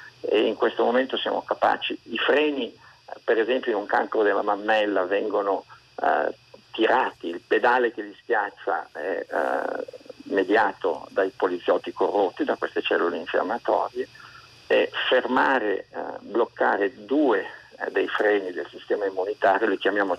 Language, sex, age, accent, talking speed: Italian, male, 50-69, native, 135 wpm